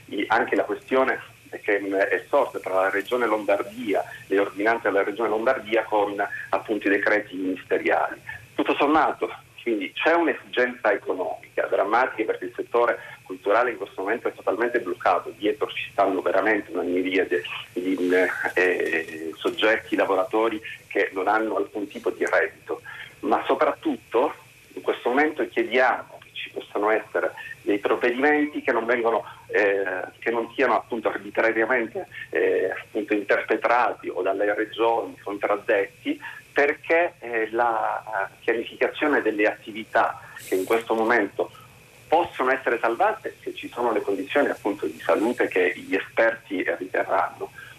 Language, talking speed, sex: Italian, 130 wpm, male